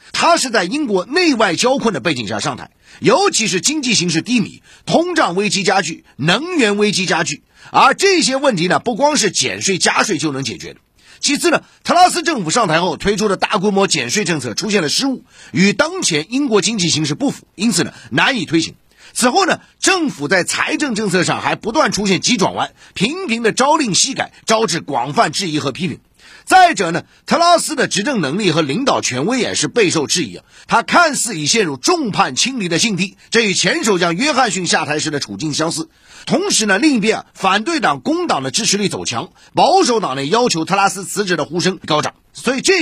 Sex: male